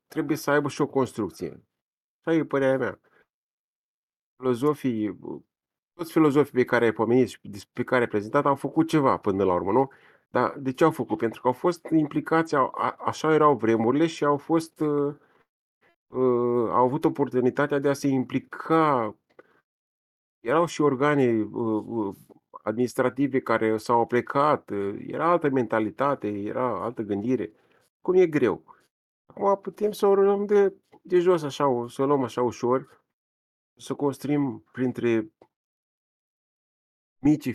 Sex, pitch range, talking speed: male, 115-145 Hz, 135 wpm